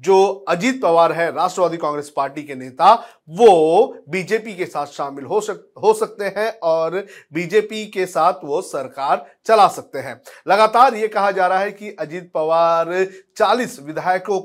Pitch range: 160-205 Hz